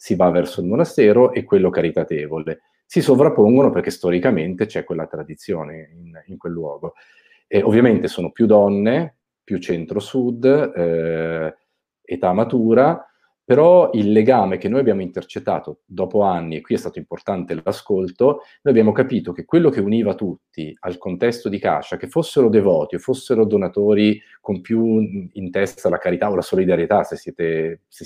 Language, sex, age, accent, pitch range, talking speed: Italian, male, 40-59, native, 85-115 Hz, 155 wpm